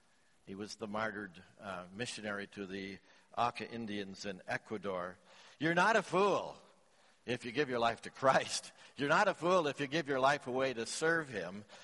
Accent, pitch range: American, 120-160 Hz